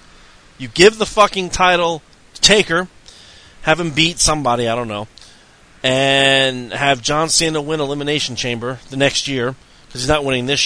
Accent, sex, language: American, male, English